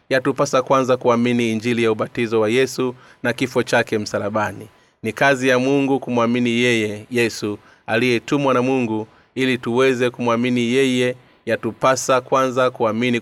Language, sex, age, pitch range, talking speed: Swahili, male, 30-49, 115-130 Hz, 130 wpm